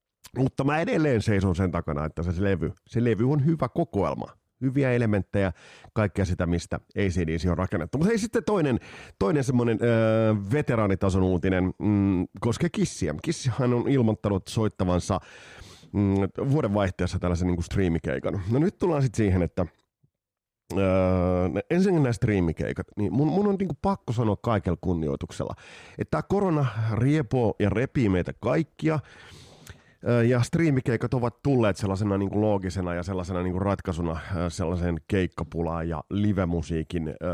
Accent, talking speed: native, 140 wpm